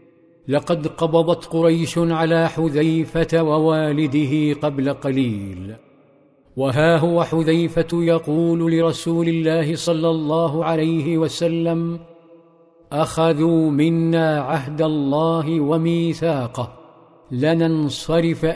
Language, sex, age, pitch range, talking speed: Arabic, male, 50-69, 140-165 Hz, 80 wpm